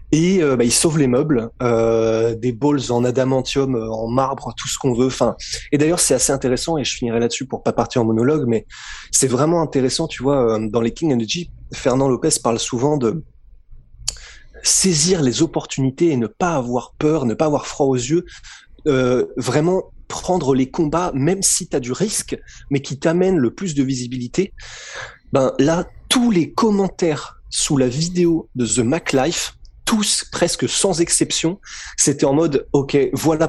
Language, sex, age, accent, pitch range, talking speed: French, male, 20-39, French, 125-155 Hz, 185 wpm